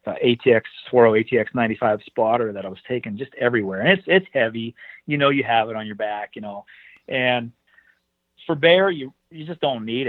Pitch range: 110-130 Hz